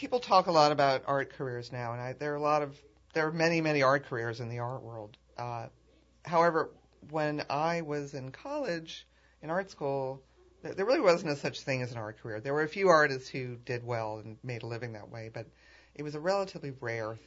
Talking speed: 225 wpm